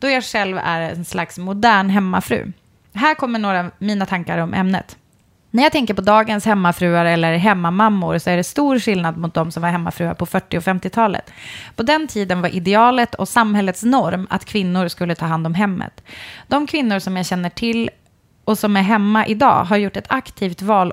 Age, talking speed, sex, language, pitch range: 20-39, 200 wpm, female, Swedish, 175-220 Hz